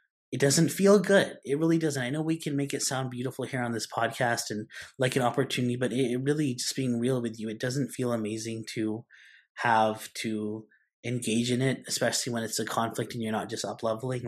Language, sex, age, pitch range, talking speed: English, male, 20-39, 110-140 Hz, 215 wpm